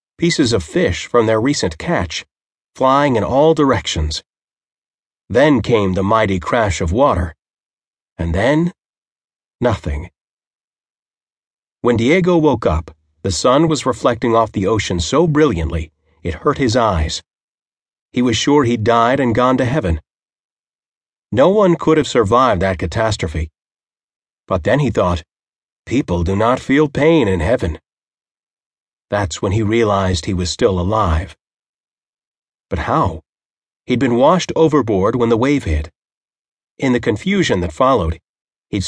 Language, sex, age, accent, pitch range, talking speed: English, male, 40-59, American, 90-140 Hz, 135 wpm